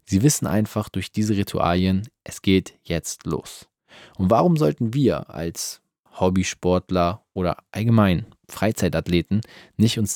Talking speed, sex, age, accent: 125 wpm, male, 20-39, German